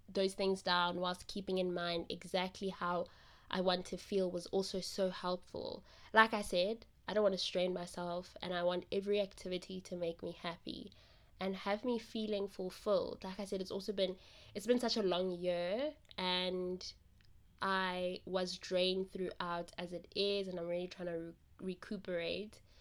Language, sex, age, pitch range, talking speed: English, female, 20-39, 175-195 Hz, 175 wpm